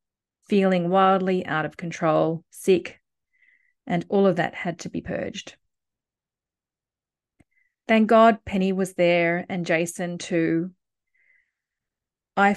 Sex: female